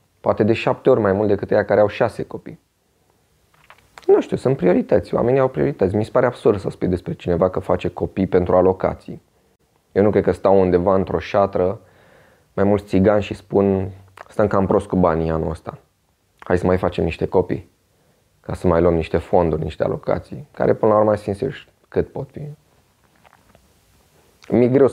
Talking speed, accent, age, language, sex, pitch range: 180 wpm, native, 20-39, Romanian, male, 90-110 Hz